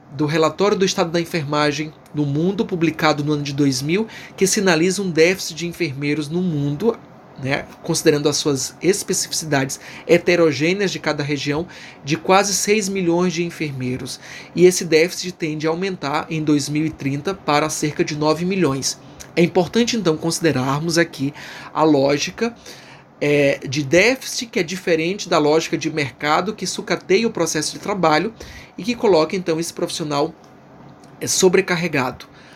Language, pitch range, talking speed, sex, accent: Portuguese, 150-185 Hz, 145 wpm, male, Brazilian